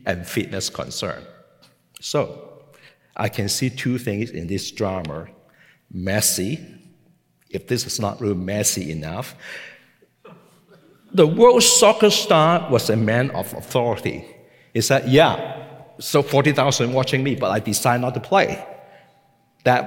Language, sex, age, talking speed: English, male, 50-69, 130 wpm